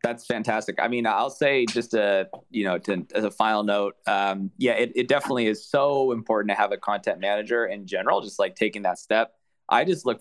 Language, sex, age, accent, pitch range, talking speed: English, male, 20-39, American, 100-115 Hz, 225 wpm